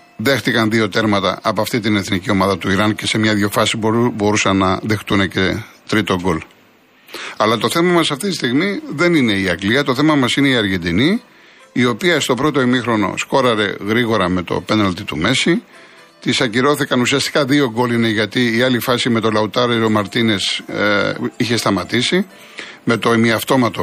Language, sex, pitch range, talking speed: Greek, male, 110-140 Hz, 170 wpm